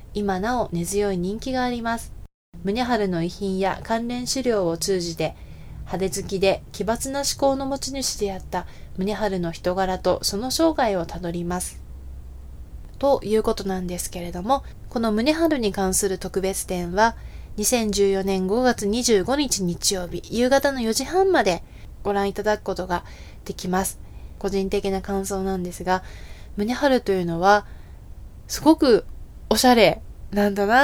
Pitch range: 180-235 Hz